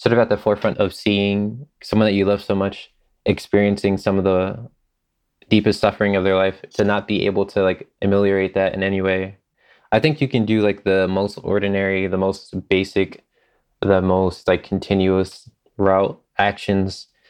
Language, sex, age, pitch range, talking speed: English, male, 20-39, 95-105 Hz, 175 wpm